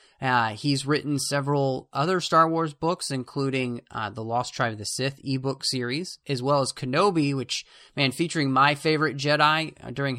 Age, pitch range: 30-49, 120-155 Hz